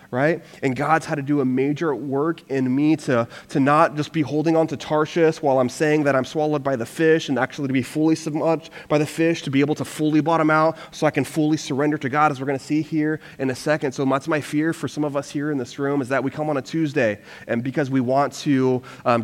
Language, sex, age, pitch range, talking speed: English, male, 30-49, 115-150 Hz, 270 wpm